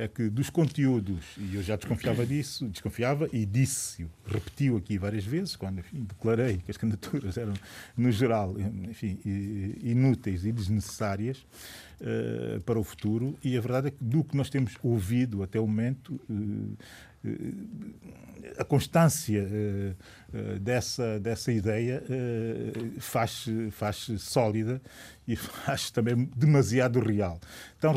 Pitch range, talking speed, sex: 105-130 Hz, 135 wpm, male